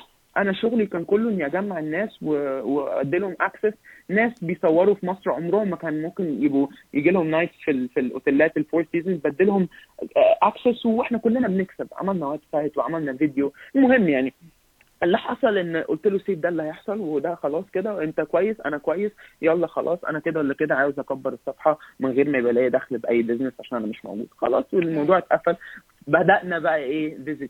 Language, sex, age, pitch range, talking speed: Arabic, male, 20-39, 140-180 Hz, 180 wpm